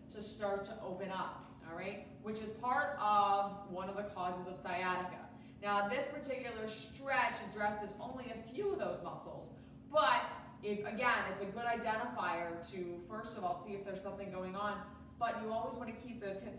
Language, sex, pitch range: English, female, 180-220 Hz